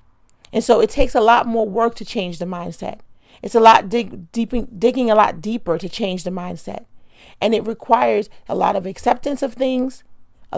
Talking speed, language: 185 wpm, English